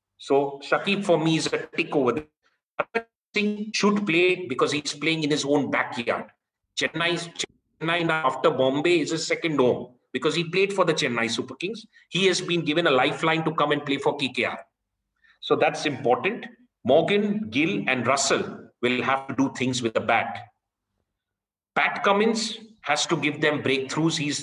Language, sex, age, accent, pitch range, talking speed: English, male, 30-49, Indian, 145-225 Hz, 170 wpm